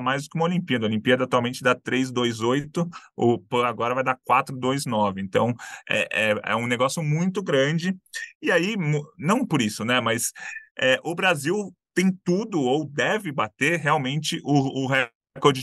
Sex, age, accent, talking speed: male, 20-39, Brazilian, 150 wpm